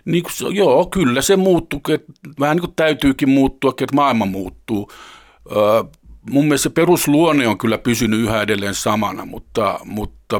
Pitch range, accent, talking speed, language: 105-125 Hz, native, 150 wpm, Finnish